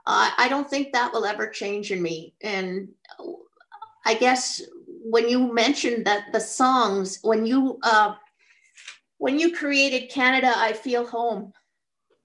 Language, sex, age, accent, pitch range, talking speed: English, female, 50-69, American, 215-305 Hz, 140 wpm